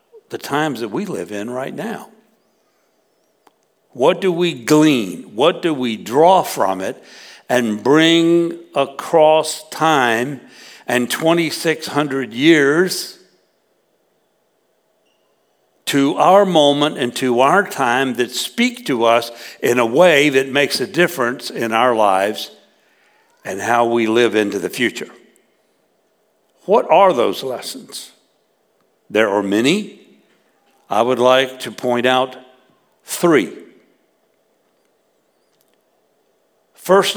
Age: 60-79